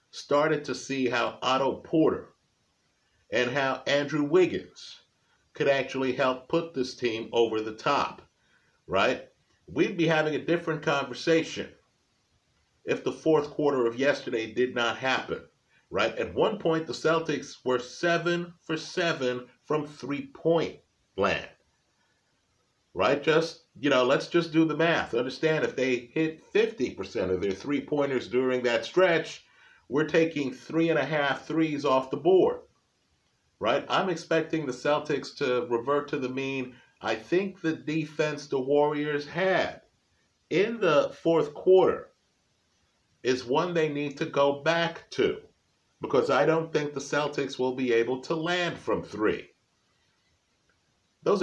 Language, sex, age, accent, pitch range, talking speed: English, male, 50-69, American, 125-160 Hz, 140 wpm